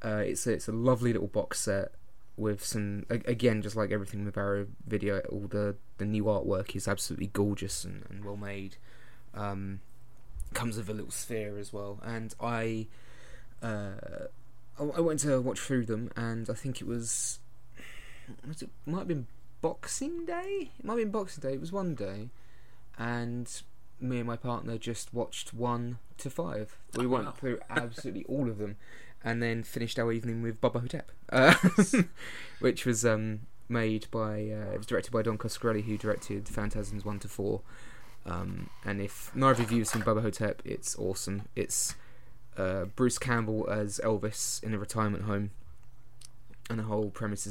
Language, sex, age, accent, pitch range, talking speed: English, male, 20-39, British, 105-125 Hz, 175 wpm